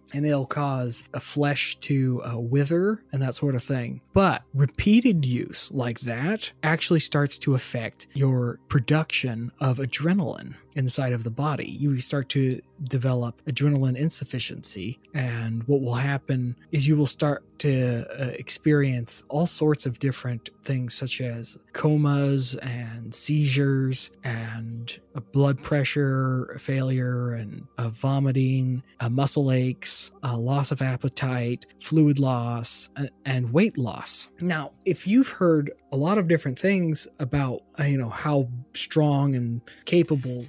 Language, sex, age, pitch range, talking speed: English, male, 20-39, 125-150 Hz, 130 wpm